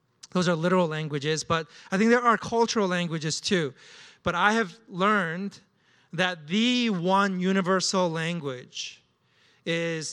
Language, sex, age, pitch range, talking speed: English, male, 30-49, 155-185 Hz, 130 wpm